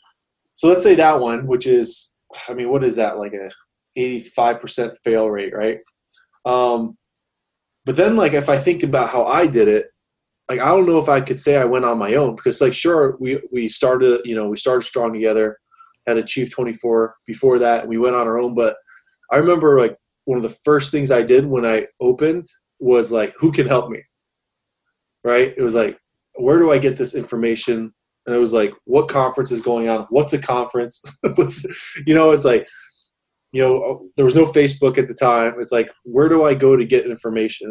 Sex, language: male, English